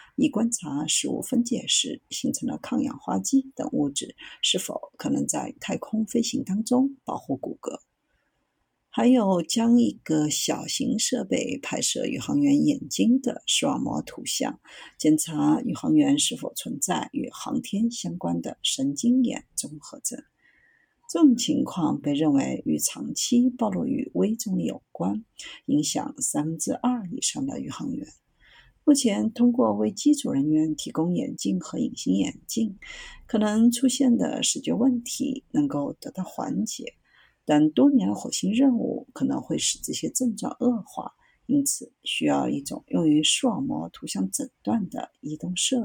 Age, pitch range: 50-69, 220-275 Hz